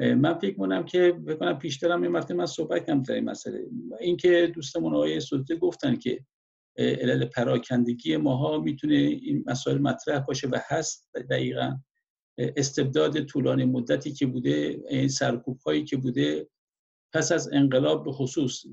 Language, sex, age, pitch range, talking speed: Persian, male, 50-69, 125-175 Hz, 140 wpm